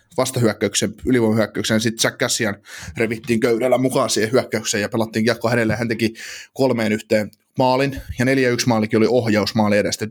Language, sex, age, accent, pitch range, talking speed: Finnish, male, 20-39, native, 110-140 Hz, 150 wpm